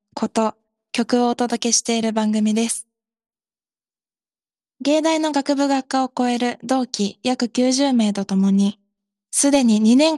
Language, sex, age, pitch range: Japanese, female, 20-39, 210-255 Hz